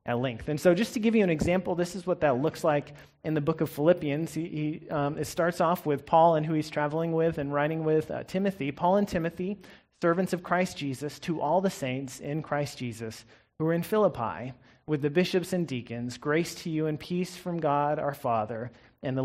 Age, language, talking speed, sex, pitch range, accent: 30-49, English, 230 wpm, male, 140-175 Hz, American